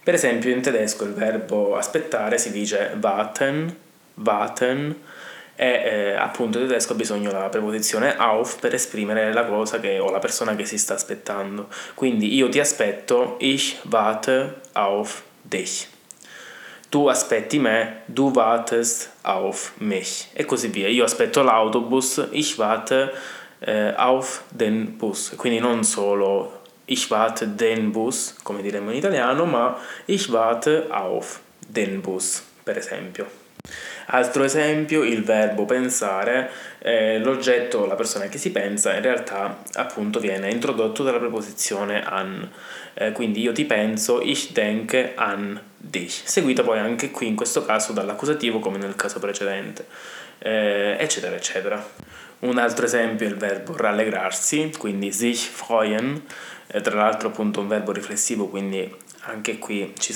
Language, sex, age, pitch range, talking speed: Italian, male, 20-39, 105-130 Hz, 145 wpm